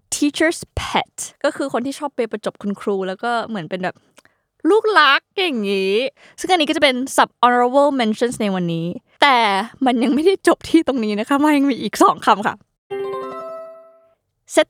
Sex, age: female, 20-39